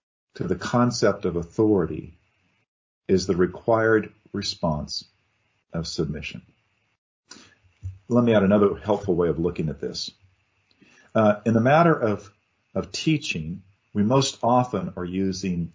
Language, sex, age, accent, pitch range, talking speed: English, male, 50-69, American, 95-130 Hz, 125 wpm